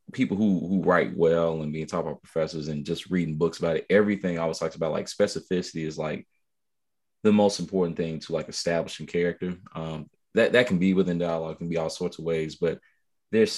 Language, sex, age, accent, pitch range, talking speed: English, male, 30-49, American, 80-90 Hz, 210 wpm